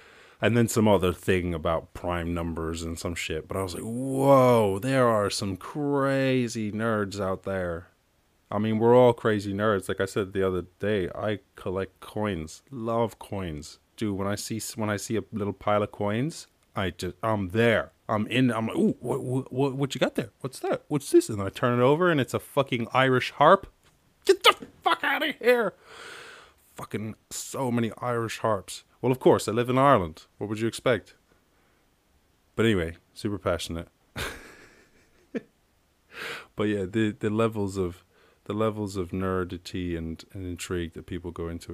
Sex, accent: male, American